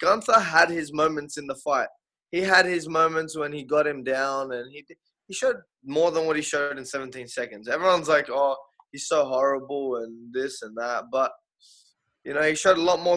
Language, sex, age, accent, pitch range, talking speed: English, male, 20-39, Australian, 140-160 Hz, 210 wpm